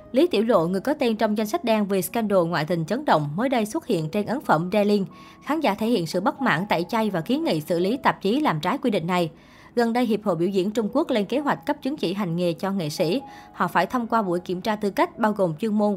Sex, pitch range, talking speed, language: male, 185-235 Hz, 290 wpm, Vietnamese